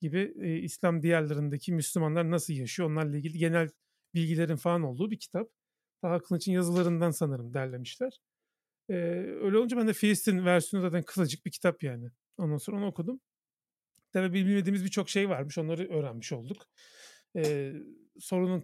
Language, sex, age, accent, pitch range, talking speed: Turkish, male, 40-59, native, 150-185 Hz, 150 wpm